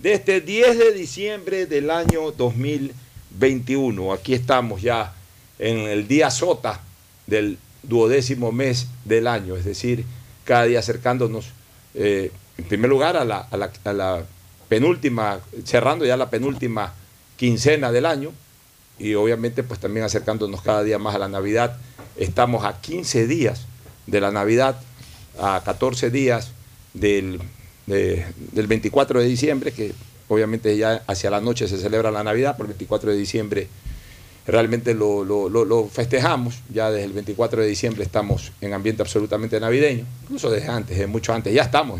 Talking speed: 150 wpm